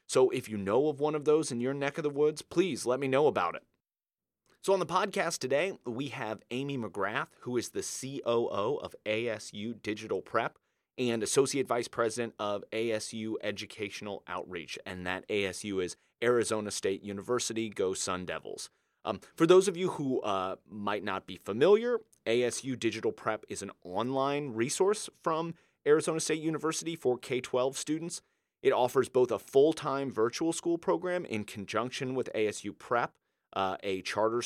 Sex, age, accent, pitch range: male, 30-49, American, 105-160 Hz